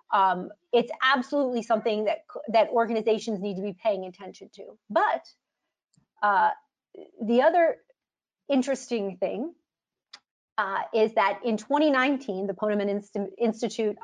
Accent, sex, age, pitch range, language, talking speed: American, female, 30-49, 200-280 Hz, English, 120 wpm